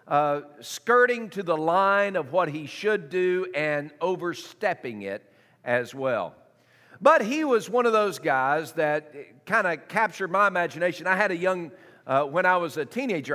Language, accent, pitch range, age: English, American, 130-180 Hz, 50-69